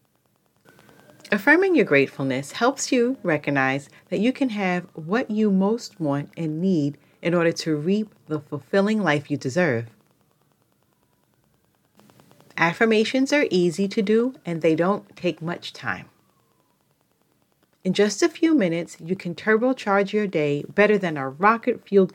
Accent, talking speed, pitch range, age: American, 135 wpm, 145-205 Hz, 40-59